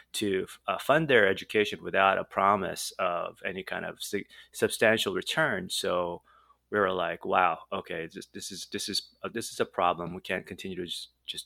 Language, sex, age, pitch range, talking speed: English, male, 30-49, 90-115 Hz, 190 wpm